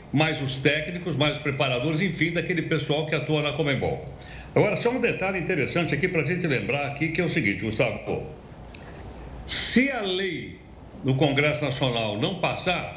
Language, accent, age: Portuguese, Brazilian, 60-79